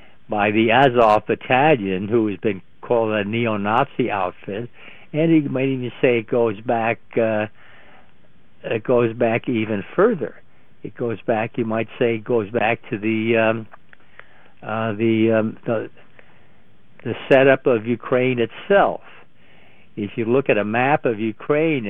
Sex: male